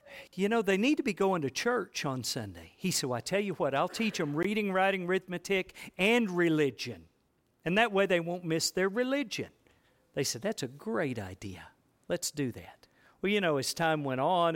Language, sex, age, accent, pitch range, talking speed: English, male, 50-69, American, 140-205 Hz, 205 wpm